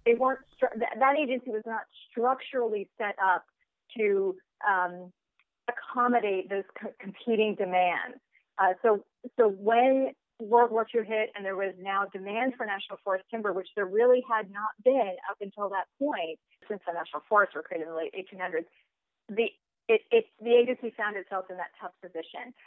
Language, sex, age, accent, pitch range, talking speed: English, female, 40-59, American, 195-240 Hz, 170 wpm